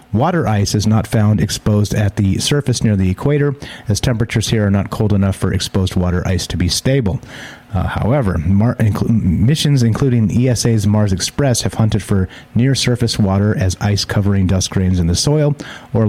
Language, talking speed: English, 175 wpm